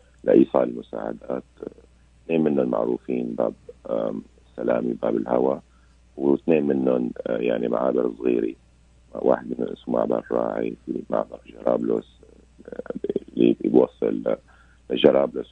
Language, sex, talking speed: Arabic, male, 95 wpm